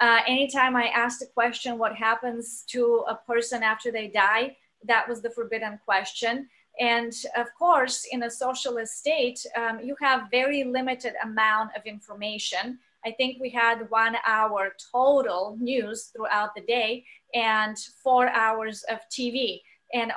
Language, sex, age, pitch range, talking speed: English, female, 30-49, 220-255 Hz, 150 wpm